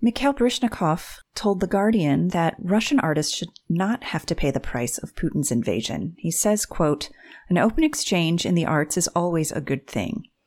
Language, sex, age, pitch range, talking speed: English, female, 30-49, 145-180 Hz, 185 wpm